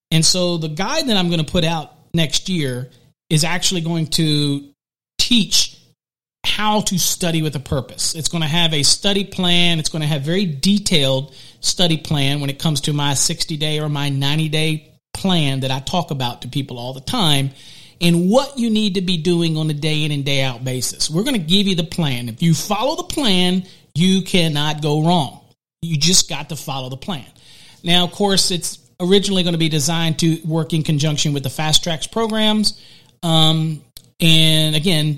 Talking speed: 200 wpm